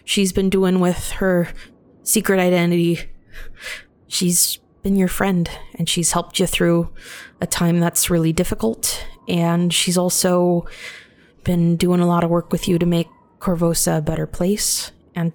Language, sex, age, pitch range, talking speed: English, female, 20-39, 160-180 Hz, 155 wpm